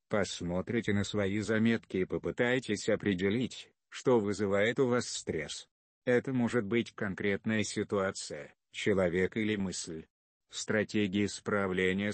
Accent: native